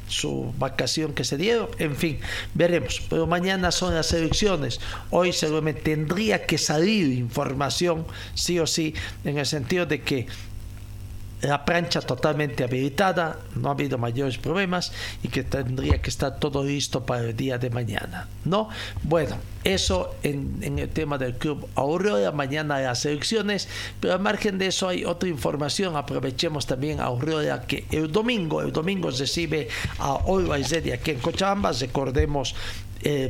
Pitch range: 125-165 Hz